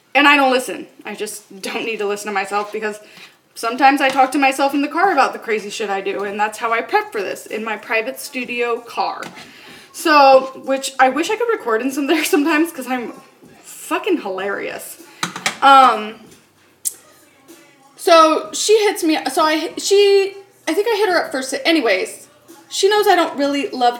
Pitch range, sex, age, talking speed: 255-325 Hz, female, 20-39, 190 wpm